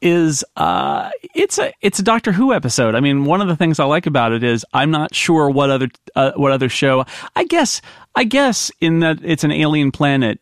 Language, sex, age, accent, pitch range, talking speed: English, male, 40-59, American, 115-155 Hz, 225 wpm